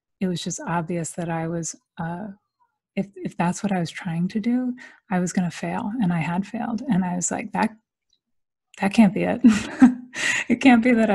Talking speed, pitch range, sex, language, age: 210 wpm, 185-235 Hz, female, English, 30-49